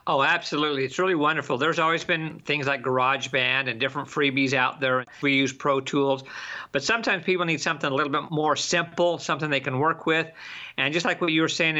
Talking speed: 215 wpm